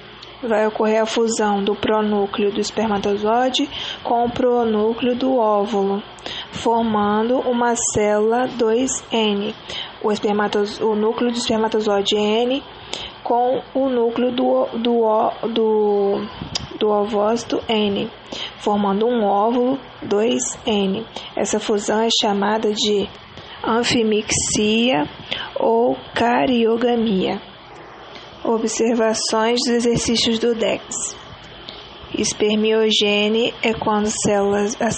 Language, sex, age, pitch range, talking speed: English, female, 20-39, 210-235 Hz, 90 wpm